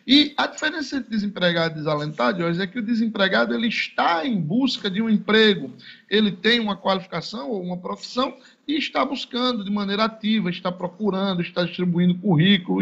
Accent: Brazilian